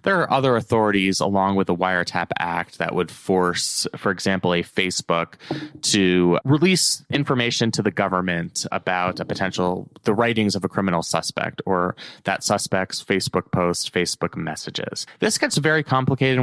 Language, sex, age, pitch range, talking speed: English, male, 20-39, 95-120 Hz, 155 wpm